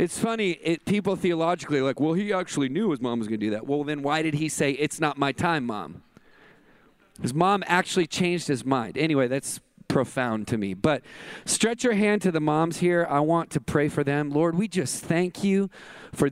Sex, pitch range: male, 145-200 Hz